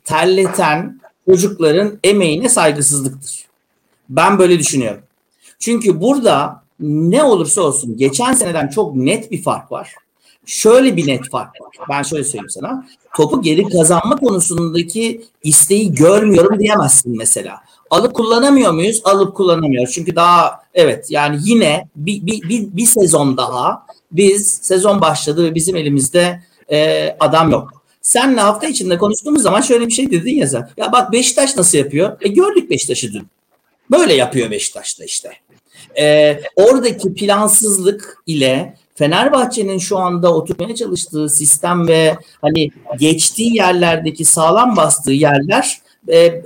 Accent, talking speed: native, 135 wpm